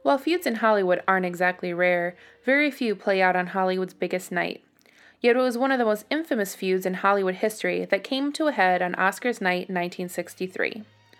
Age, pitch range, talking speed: 20-39, 185-245 Hz, 200 wpm